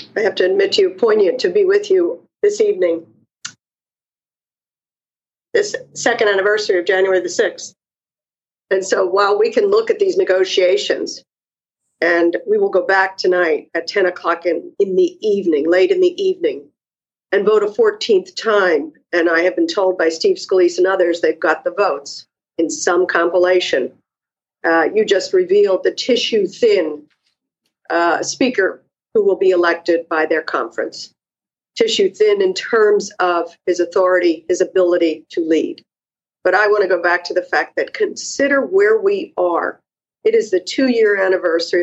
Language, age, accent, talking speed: English, 50-69, American, 165 wpm